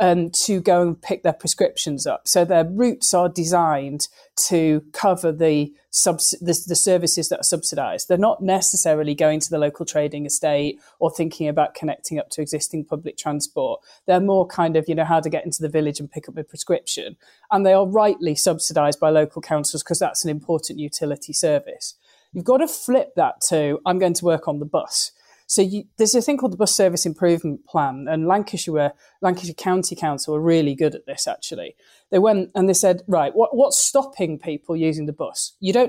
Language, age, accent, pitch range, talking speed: English, 30-49, British, 155-200 Hz, 200 wpm